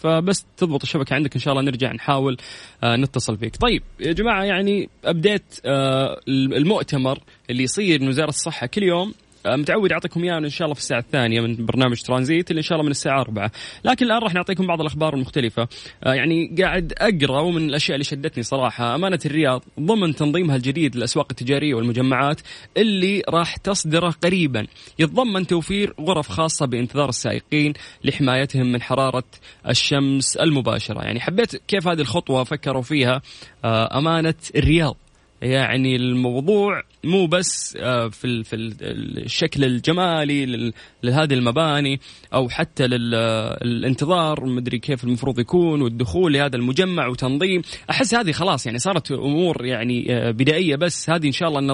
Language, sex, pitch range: Arabic, male, 125-170 Hz